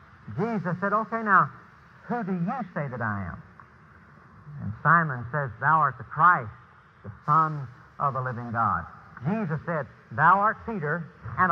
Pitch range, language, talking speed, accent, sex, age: 150-210 Hz, English, 155 wpm, American, male, 60-79